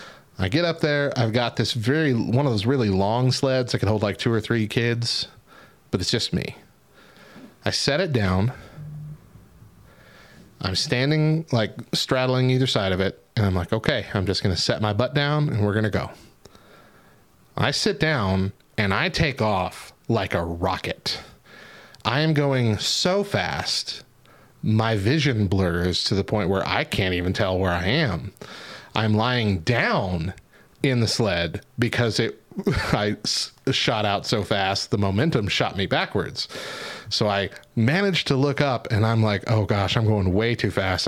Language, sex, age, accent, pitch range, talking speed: English, male, 30-49, American, 100-130 Hz, 170 wpm